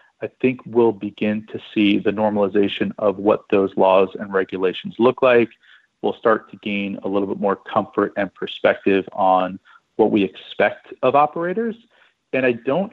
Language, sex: English, male